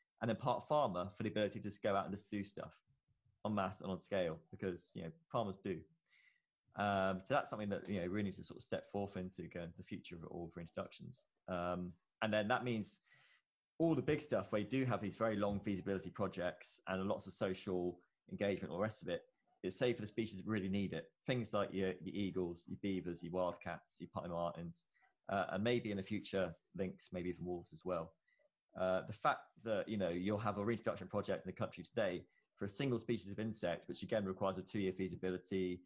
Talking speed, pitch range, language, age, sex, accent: 225 wpm, 90-110 Hz, English, 20-39, male, British